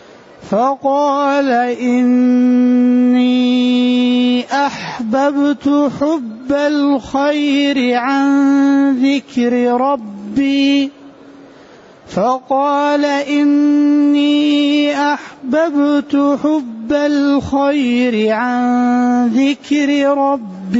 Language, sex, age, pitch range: Arabic, male, 30-49, 250-285 Hz